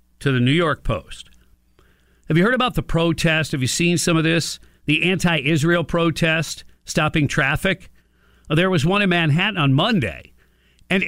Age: 50-69